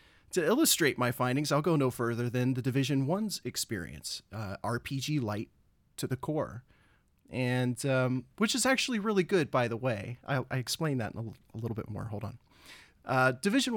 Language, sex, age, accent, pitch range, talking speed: English, male, 30-49, American, 110-135 Hz, 190 wpm